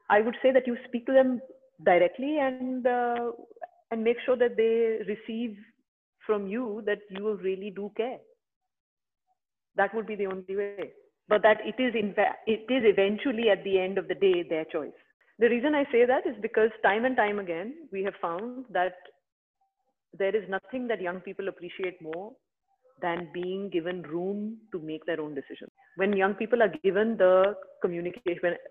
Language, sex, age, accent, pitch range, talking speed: English, female, 30-49, Indian, 180-255 Hz, 180 wpm